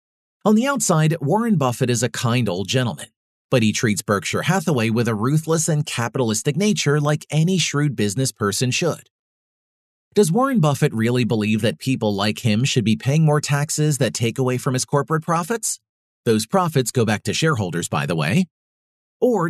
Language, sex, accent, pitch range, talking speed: English, male, American, 115-165 Hz, 180 wpm